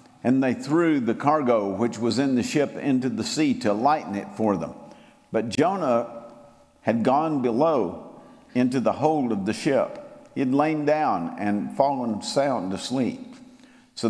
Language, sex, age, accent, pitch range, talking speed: English, male, 50-69, American, 115-170 Hz, 160 wpm